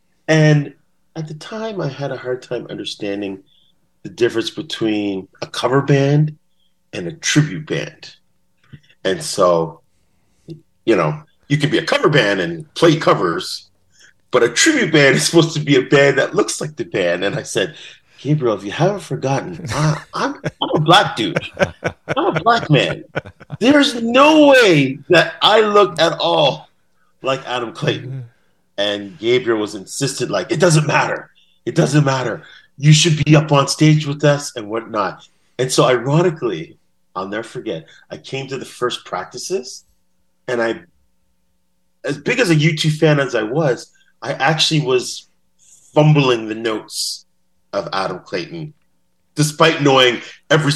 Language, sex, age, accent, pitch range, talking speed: English, male, 40-59, American, 115-165 Hz, 155 wpm